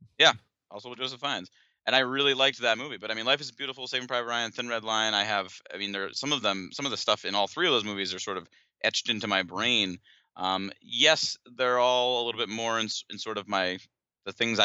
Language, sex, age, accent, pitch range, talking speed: English, male, 30-49, American, 100-130 Hz, 260 wpm